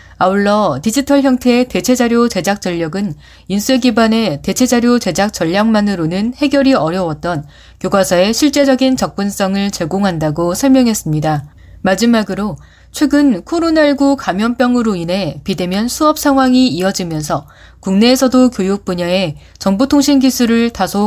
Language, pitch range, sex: Korean, 175-245 Hz, female